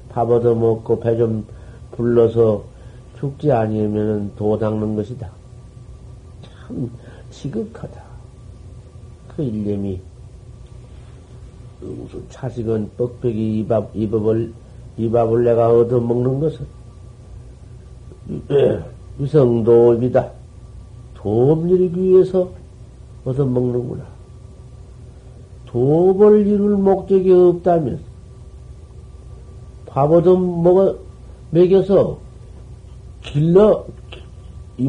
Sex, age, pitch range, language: male, 50-69, 115-165 Hz, Korean